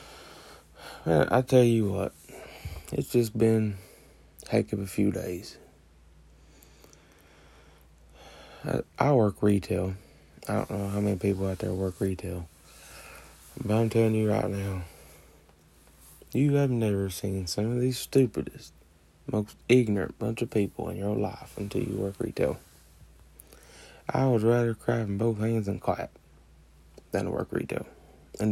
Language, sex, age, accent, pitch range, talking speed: English, male, 20-39, American, 75-110 Hz, 140 wpm